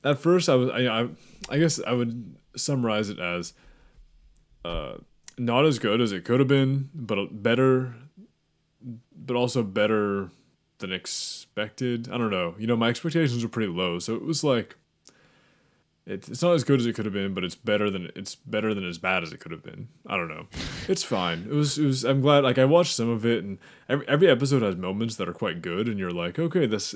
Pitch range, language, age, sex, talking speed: 100-135 Hz, English, 20-39, male, 215 wpm